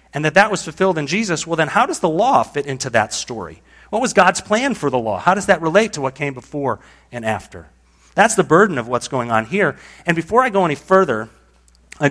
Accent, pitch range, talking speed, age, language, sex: American, 110-165 Hz, 245 wpm, 40-59, English, male